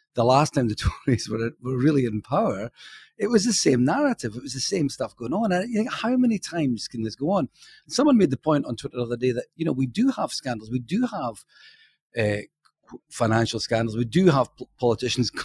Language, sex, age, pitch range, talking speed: English, male, 40-59, 125-165 Hz, 230 wpm